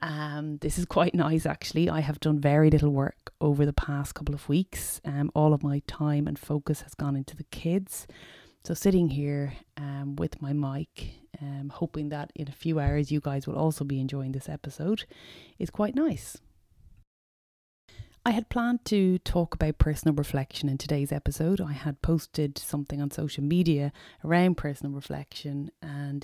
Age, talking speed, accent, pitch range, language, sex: 30-49, 175 wpm, Irish, 145-165 Hz, English, female